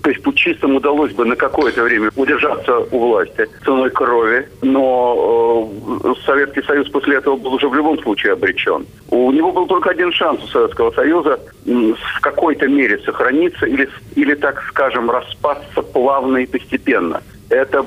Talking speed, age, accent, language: 155 wpm, 50-69, native, Russian